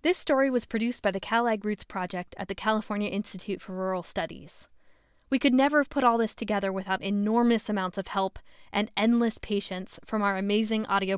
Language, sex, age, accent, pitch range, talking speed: English, female, 10-29, American, 200-245 Hz, 195 wpm